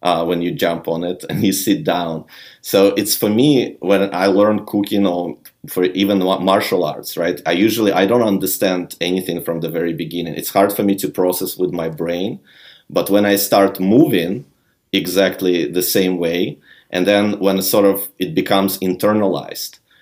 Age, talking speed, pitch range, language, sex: 30-49, 180 wpm, 90-100 Hz, English, male